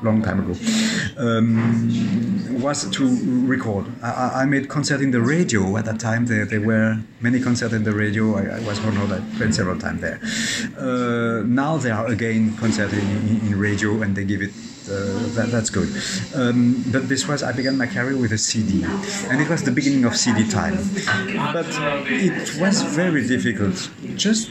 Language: English